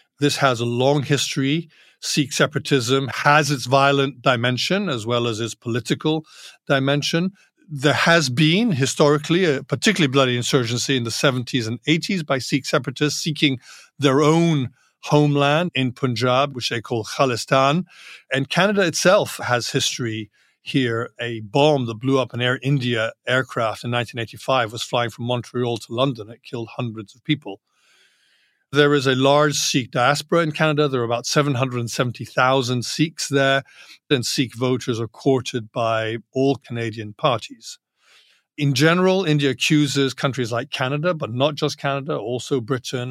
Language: English